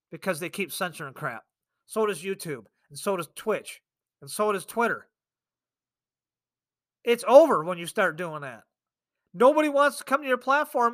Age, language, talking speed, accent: 40-59, English, 165 wpm, American